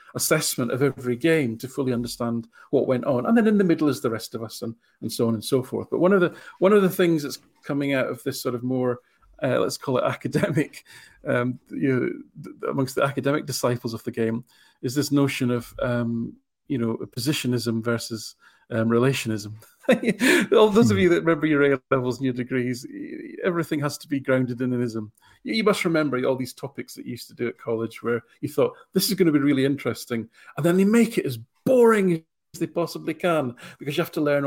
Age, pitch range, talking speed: 40-59, 125-170 Hz, 225 wpm